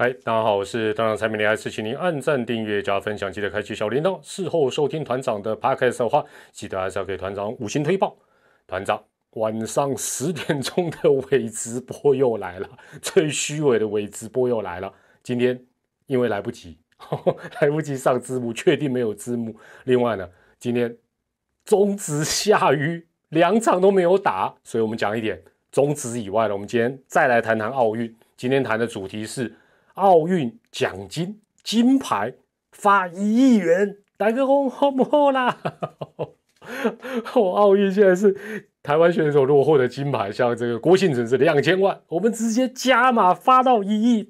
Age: 30-49